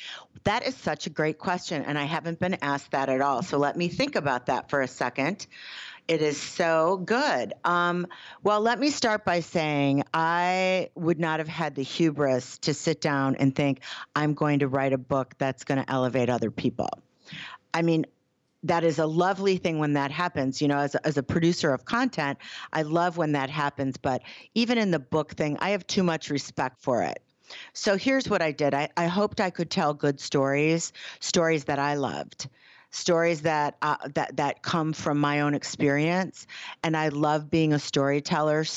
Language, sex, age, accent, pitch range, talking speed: English, female, 50-69, American, 145-175 Hz, 195 wpm